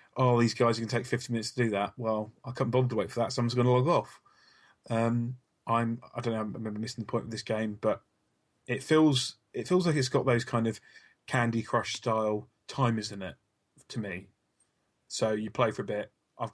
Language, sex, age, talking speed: English, male, 20-39, 225 wpm